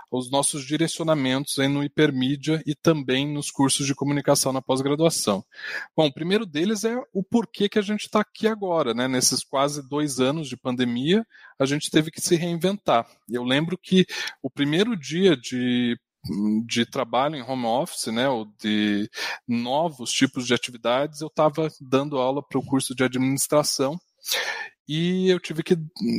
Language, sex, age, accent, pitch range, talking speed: Portuguese, male, 20-39, Brazilian, 130-160 Hz, 165 wpm